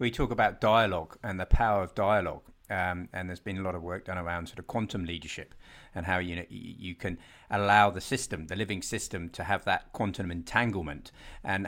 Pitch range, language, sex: 90-115 Hz, English, male